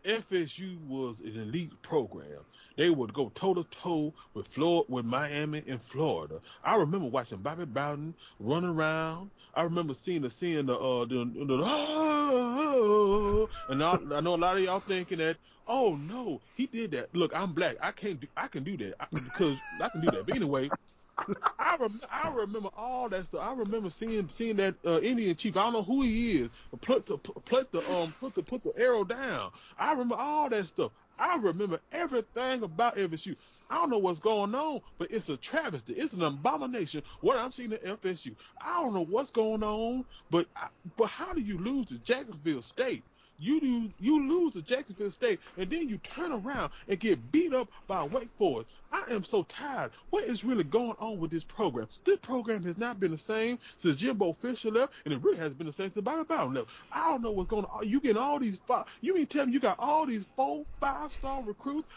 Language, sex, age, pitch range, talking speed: English, male, 20-39, 175-265 Hz, 210 wpm